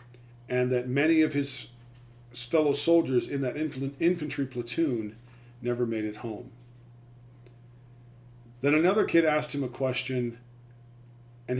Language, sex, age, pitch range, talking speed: English, male, 40-59, 120-135 Hz, 120 wpm